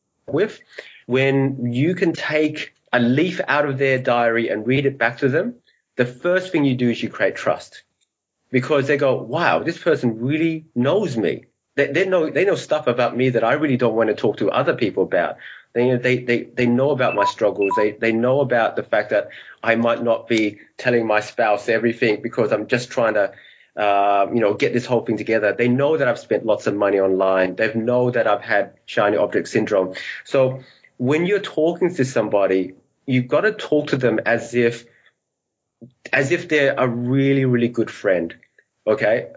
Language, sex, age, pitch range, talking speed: English, male, 30-49, 115-145 Hz, 200 wpm